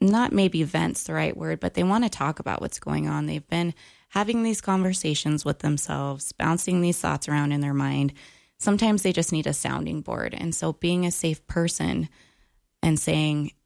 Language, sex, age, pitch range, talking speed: English, female, 20-39, 155-190 Hz, 195 wpm